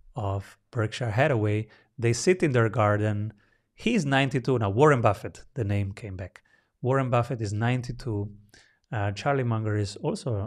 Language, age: English, 30-49